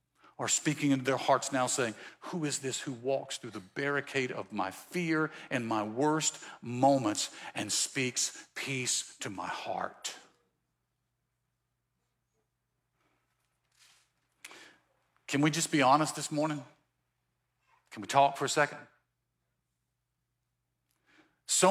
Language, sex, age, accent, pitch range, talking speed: English, male, 50-69, American, 125-170 Hz, 115 wpm